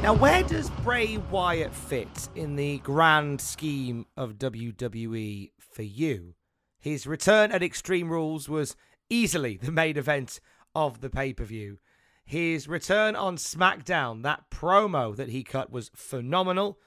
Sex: male